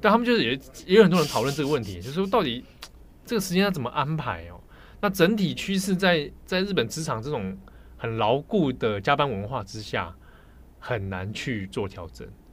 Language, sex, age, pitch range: Chinese, male, 20-39, 95-150 Hz